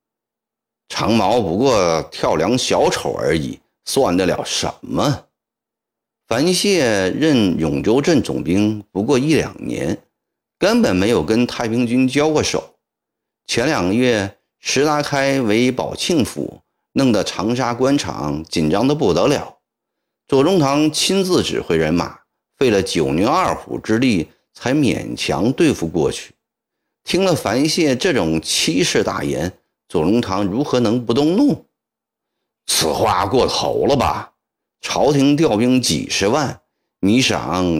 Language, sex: Chinese, male